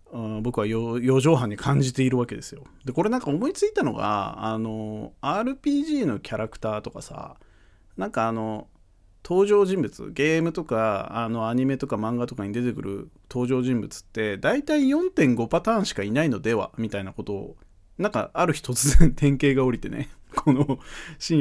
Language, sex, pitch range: Japanese, male, 110-170 Hz